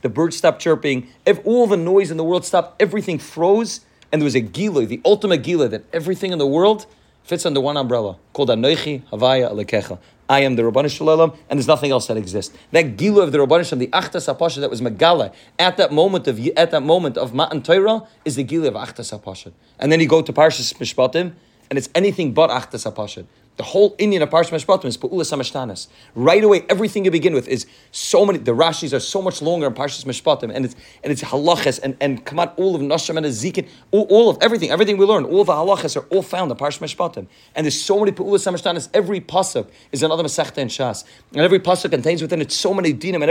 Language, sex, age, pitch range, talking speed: English, male, 30-49, 130-180 Hz, 220 wpm